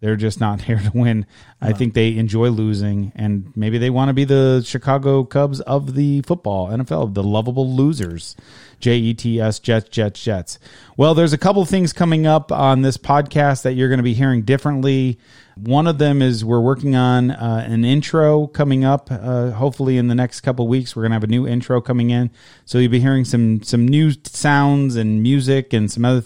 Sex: male